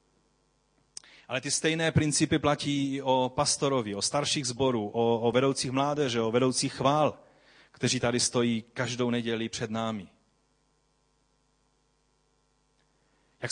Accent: native